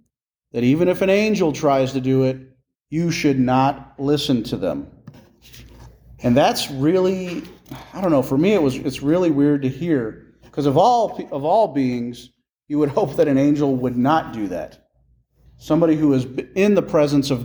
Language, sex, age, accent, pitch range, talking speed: English, male, 40-59, American, 130-170 Hz, 180 wpm